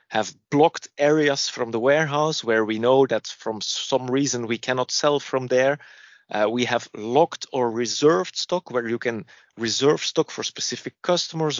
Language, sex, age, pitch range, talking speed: English, male, 30-49, 115-145 Hz, 170 wpm